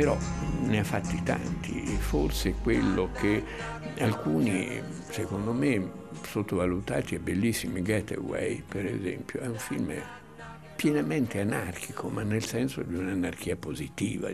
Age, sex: 60-79, male